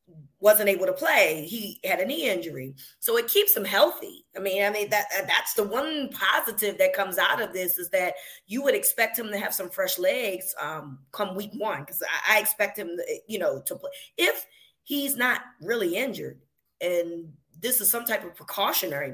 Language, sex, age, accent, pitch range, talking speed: English, female, 20-39, American, 185-240 Hz, 200 wpm